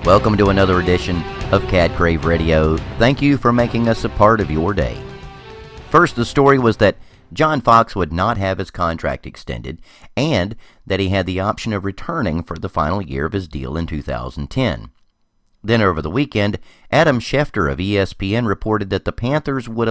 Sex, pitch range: male, 85-115 Hz